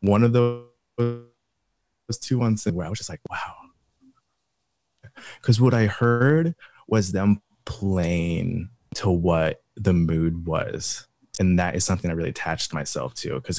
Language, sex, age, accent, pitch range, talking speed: English, male, 20-39, American, 85-105 Hz, 150 wpm